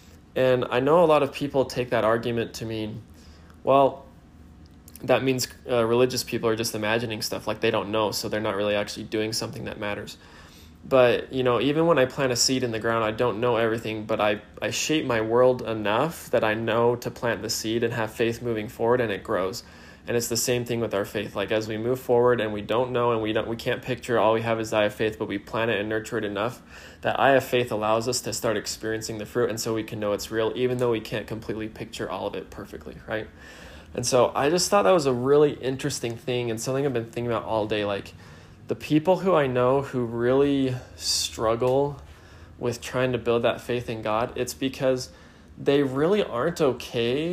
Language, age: English, 20-39